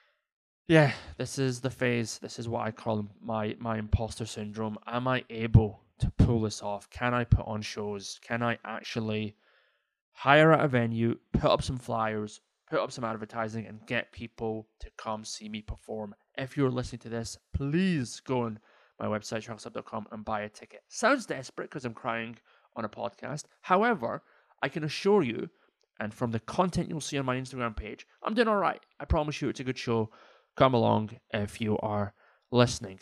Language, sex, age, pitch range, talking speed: English, male, 20-39, 105-125 Hz, 185 wpm